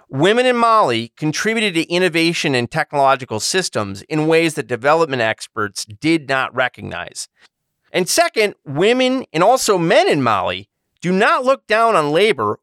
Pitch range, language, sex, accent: 120-190 Hz, English, male, American